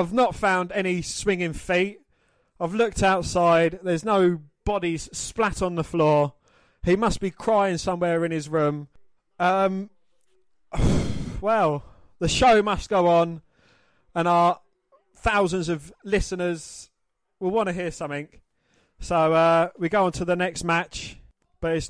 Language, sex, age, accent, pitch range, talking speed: English, male, 20-39, British, 155-185 Hz, 140 wpm